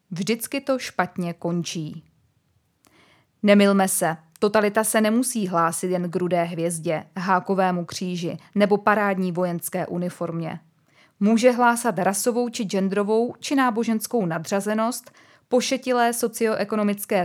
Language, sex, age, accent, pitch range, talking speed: Czech, female, 20-39, native, 175-220 Hz, 105 wpm